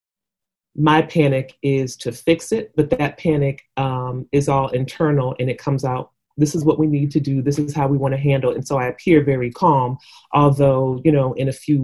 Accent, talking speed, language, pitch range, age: American, 225 wpm, English, 140-160 Hz, 30-49